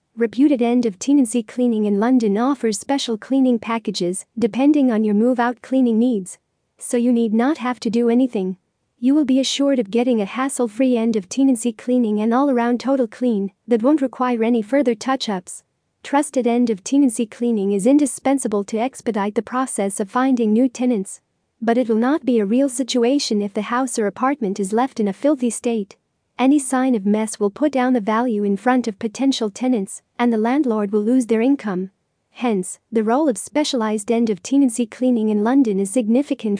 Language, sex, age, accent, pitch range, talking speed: English, female, 40-59, American, 220-260 Hz, 180 wpm